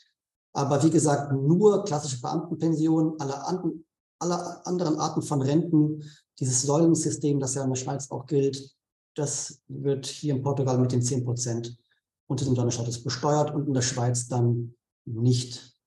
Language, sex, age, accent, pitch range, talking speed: German, male, 40-59, German, 130-155 Hz, 145 wpm